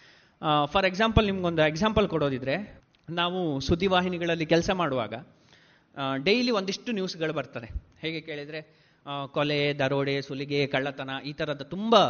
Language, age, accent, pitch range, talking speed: Kannada, 30-49, native, 150-215 Hz, 110 wpm